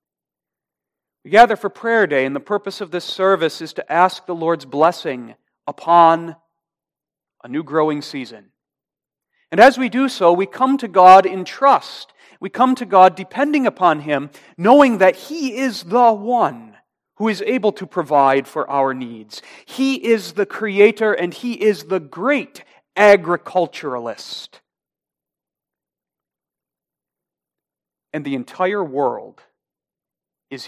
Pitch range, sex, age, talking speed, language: 140-205 Hz, male, 40-59, 135 wpm, English